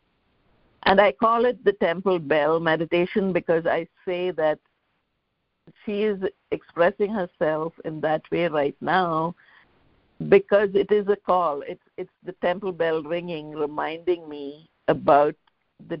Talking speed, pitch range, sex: 135 wpm, 160-190 Hz, female